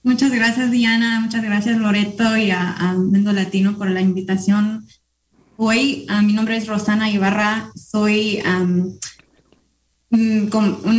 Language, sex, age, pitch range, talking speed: English, female, 20-39, 185-220 Hz, 130 wpm